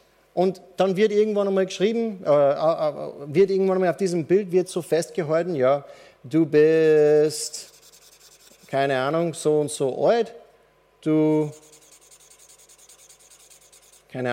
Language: German